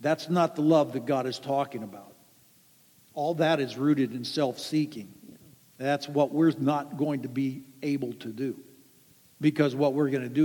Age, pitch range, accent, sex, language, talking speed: 60-79, 150-215 Hz, American, male, English, 180 wpm